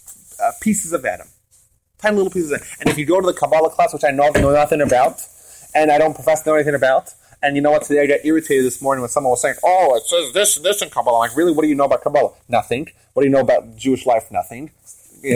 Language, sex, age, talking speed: English, male, 30-49, 280 wpm